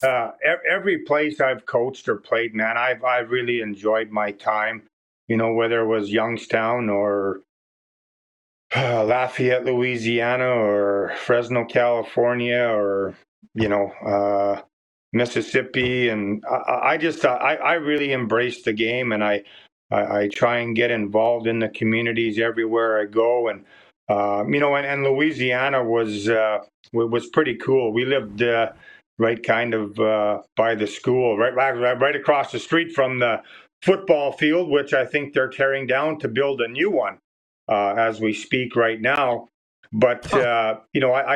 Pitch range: 110-130 Hz